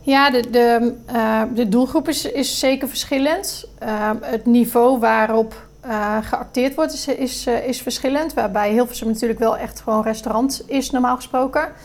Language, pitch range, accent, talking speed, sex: Dutch, 220-250 Hz, Dutch, 145 wpm, female